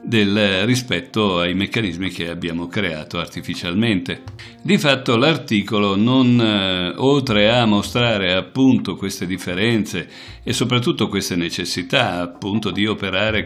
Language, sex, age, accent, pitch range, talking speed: Italian, male, 50-69, native, 90-115 Hz, 110 wpm